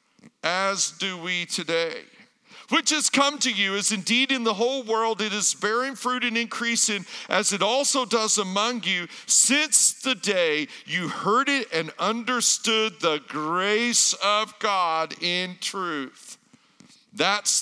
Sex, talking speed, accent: male, 145 wpm, American